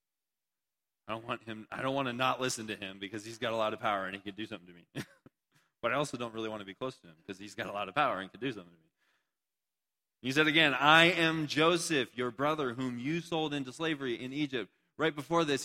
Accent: American